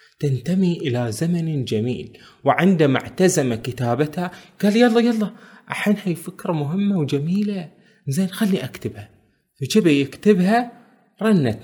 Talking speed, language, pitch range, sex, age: 110 wpm, Arabic, 130-185 Hz, male, 20-39